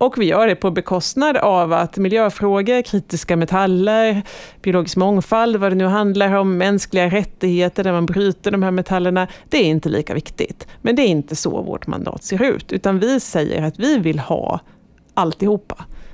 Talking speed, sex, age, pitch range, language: 180 wpm, female, 30-49, 170-225 Hz, Swedish